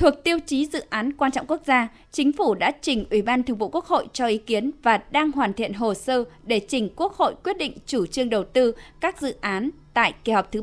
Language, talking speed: Vietnamese, 255 wpm